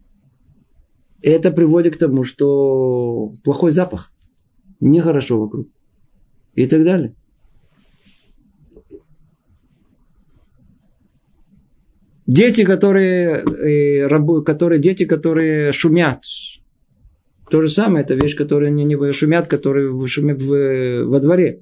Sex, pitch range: male, 130-165 Hz